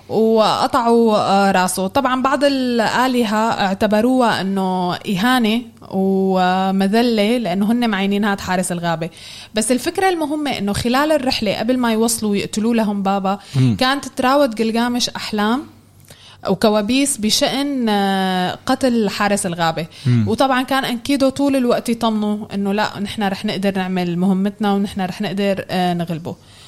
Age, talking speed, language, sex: 20-39, 115 wpm, Arabic, female